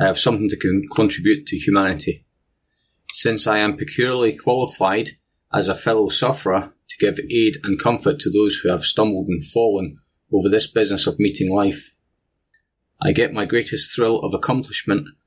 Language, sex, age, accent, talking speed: English, male, 30-49, British, 165 wpm